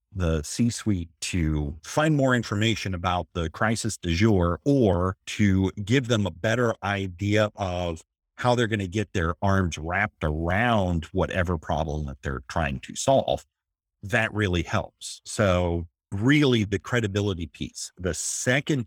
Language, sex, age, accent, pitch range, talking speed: English, male, 50-69, American, 85-110 Hz, 145 wpm